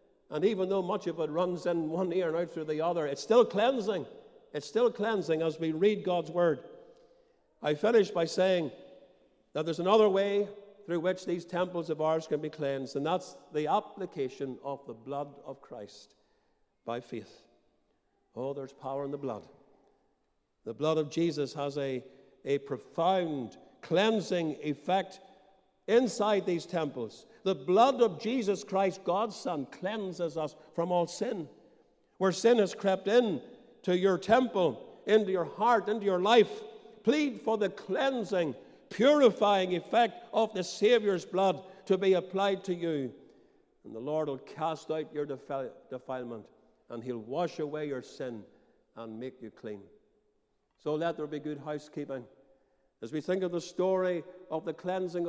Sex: male